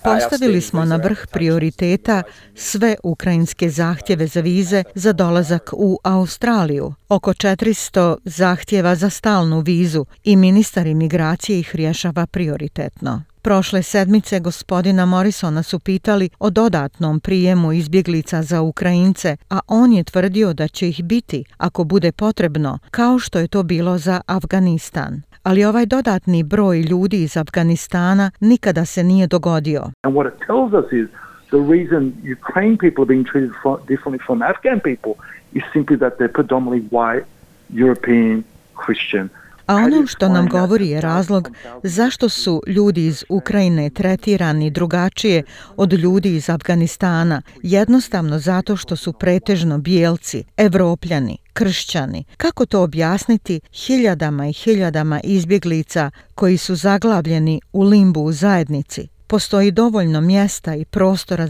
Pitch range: 160-200 Hz